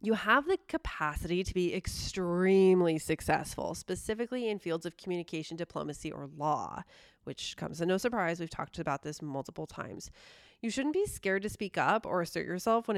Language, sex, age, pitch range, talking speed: English, female, 20-39, 170-210 Hz, 175 wpm